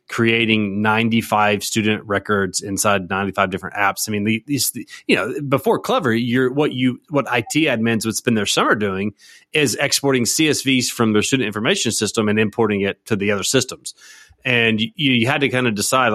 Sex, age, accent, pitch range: male, 30-49, American, 105-130 Hz